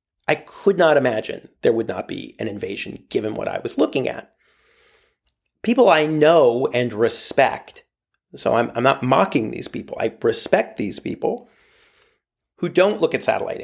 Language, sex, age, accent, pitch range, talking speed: English, male, 40-59, American, 125-175 Hz, 165 wpm